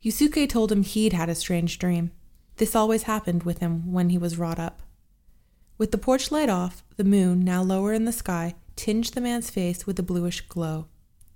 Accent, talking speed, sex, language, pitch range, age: American, 200 wpm, female, English, 170-220 Hz, 20-39